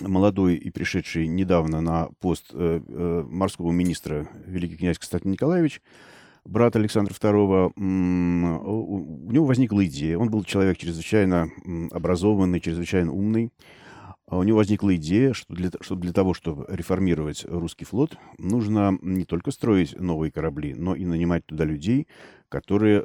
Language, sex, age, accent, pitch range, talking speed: Russian, male, 40-59, native, 85-105 Hz, 130 wpm